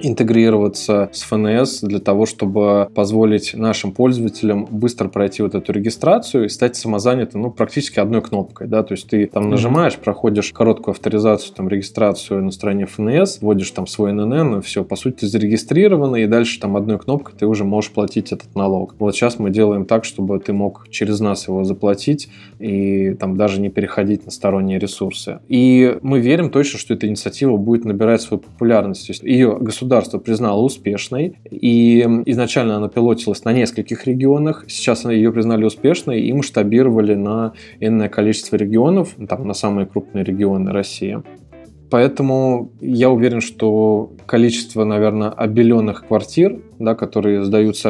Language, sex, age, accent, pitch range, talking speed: Russian, male, 20-39, native, 105-120 Hz, 155 wpm